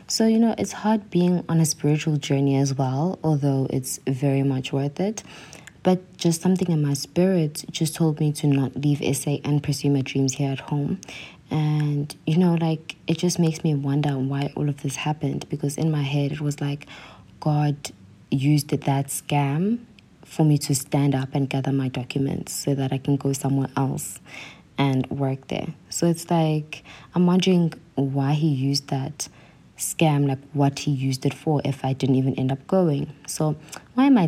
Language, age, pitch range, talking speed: English, 20-39, 140-165 Hz, 190 wpm